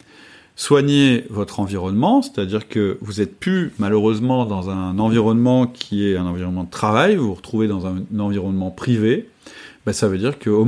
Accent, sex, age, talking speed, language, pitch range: French, male, 40-59, 175 wpm, French, 100-120 Hz